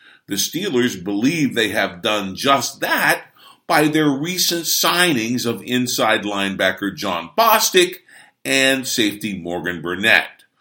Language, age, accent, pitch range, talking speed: English, 50-69, American, 100-135 Hz, 120 wpm